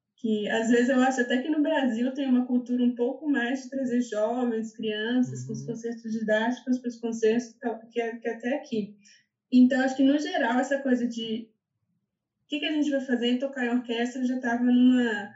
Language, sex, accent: Portuguese, female, Brazilian